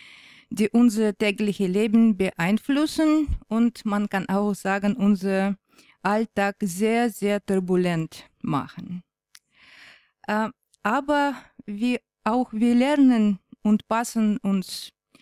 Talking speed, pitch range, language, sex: 95 wpm, 190-230 Hz, German, female